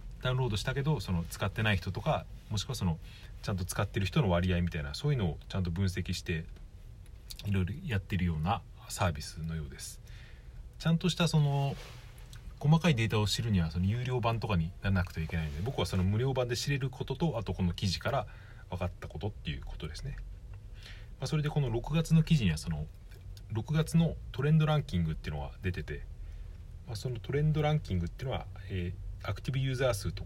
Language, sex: Japanese, male